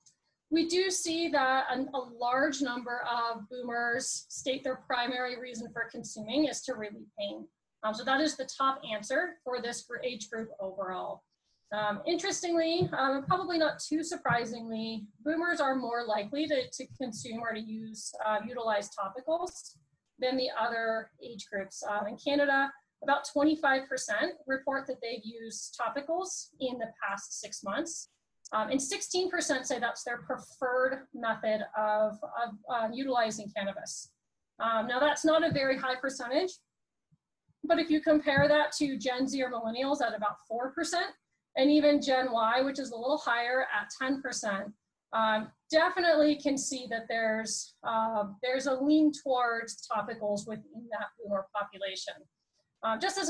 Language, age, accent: English, 30-49, American